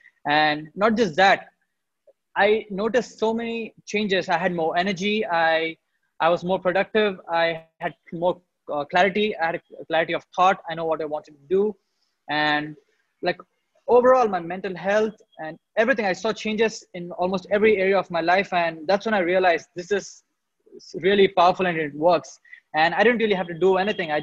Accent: Indian